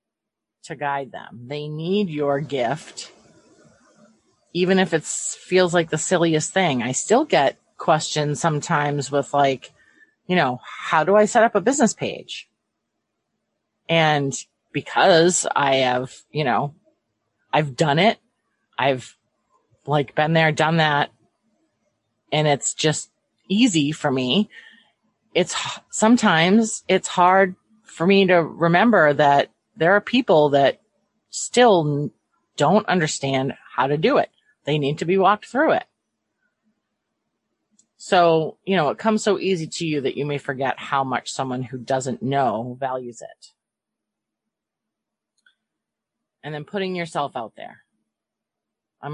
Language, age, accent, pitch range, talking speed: English, 30-49, American, 140-190 Hz, 130 wpm